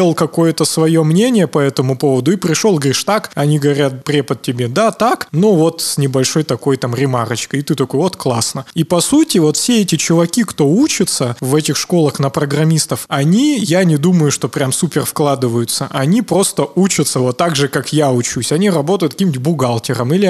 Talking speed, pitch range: 190 wpm, 135-165 Hz